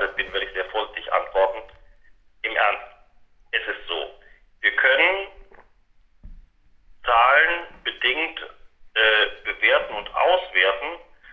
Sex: male